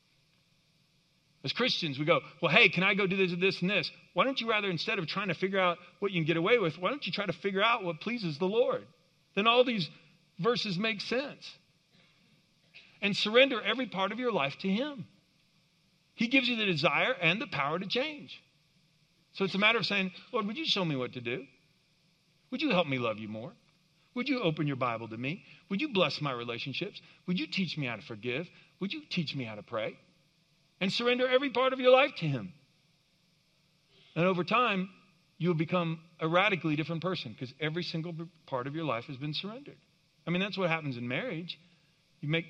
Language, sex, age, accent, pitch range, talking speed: English, male, 50-69, American, 155-190 Hz, 215 wpm